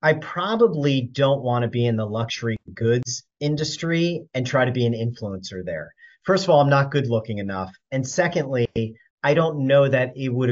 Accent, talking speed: American, 195 wpm